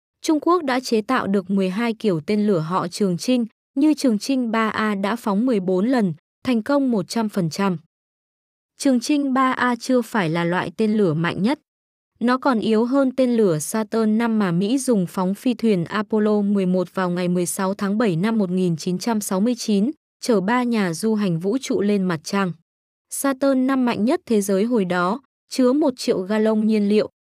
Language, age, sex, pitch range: Vietnamese, 20-39, female, 195-250 Hz